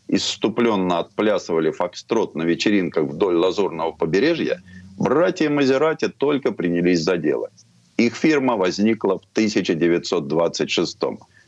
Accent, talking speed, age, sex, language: native, 100 wpm, 50-69, male, Russian